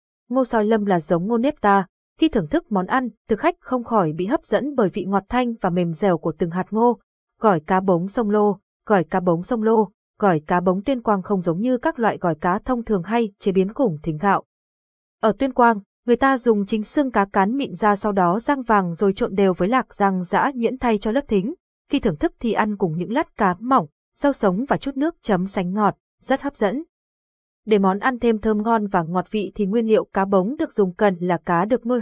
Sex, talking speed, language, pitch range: female, 245 wpm, Vietnamese, 185-240 Hz